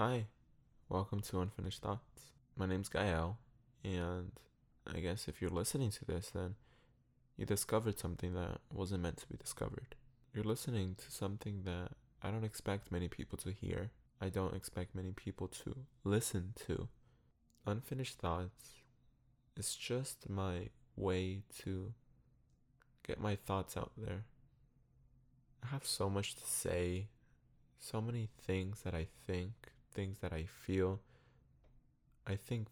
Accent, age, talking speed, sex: American, 20-39, 140 wpm, male